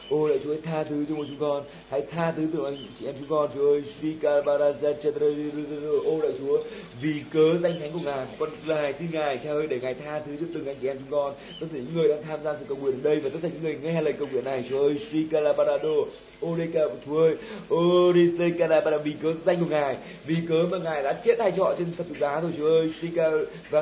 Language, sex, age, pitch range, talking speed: Vietnamese, male, 20-39, 150-170 Hz, 260 wpm